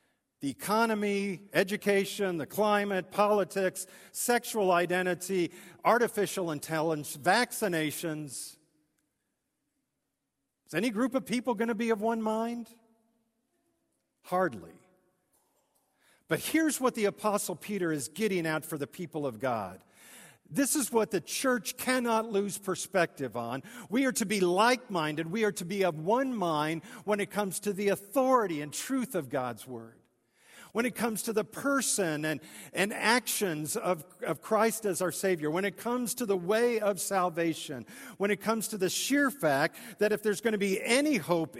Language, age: English, 50-69